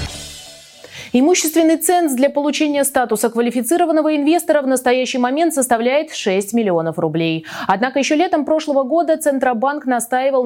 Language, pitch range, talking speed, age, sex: Russian, 185-270 Hz, 120 wpm, 20-39, female